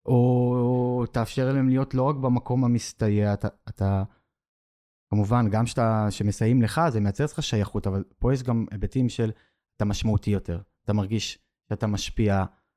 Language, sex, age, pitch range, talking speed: Hebrew, male, 20-39, 105-125 Hz, 155 wpm